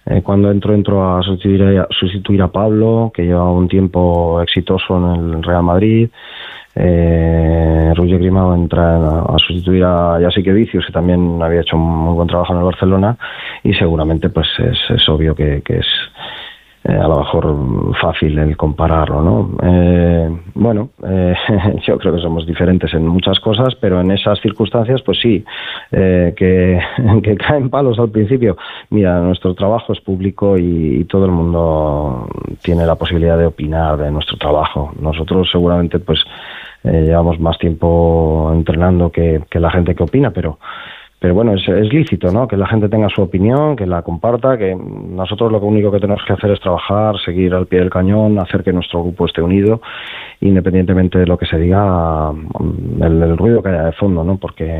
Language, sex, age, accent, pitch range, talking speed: Spanish, male, 20-39, Spanish, 85-100 Hz, 180 wpm